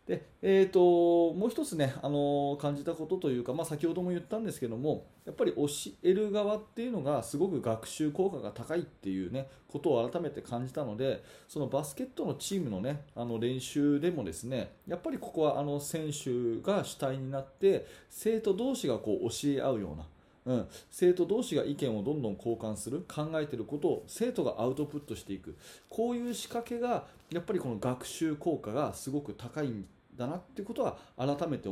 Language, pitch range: Japanese, 135-185 Hz